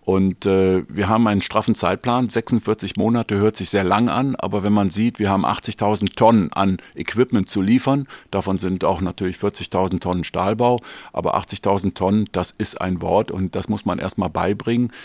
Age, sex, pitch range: 50-69, male, 95-110 Hz